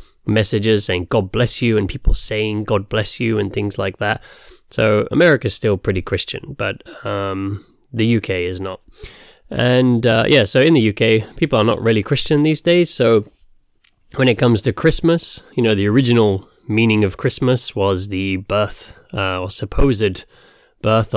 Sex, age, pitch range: male, 20-39, 100-125 Hz